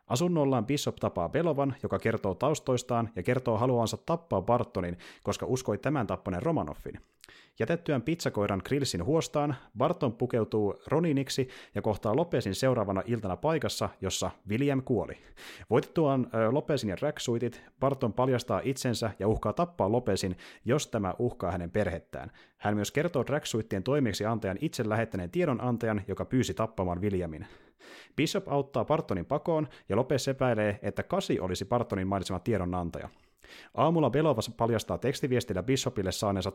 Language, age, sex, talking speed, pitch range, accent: Finnish, 30-49, male, 135 wpm, 100-135 Hz, native